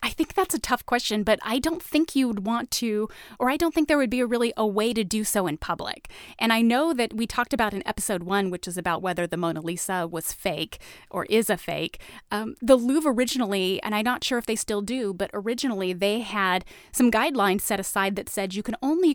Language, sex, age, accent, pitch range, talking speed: English, female, 30-49, American, 180-235 Hz, 240 wpm